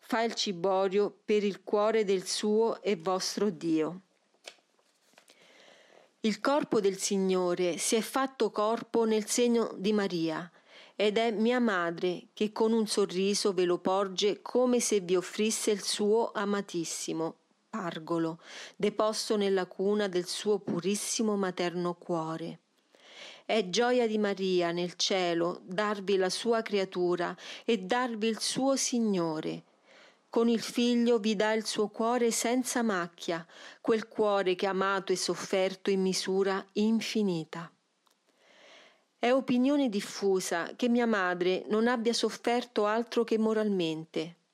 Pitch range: 185-225 Hz